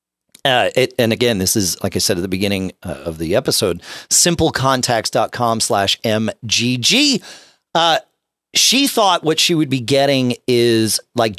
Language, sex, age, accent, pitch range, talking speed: English, male, 40-59, American, 105-155 Hz, 155 wpm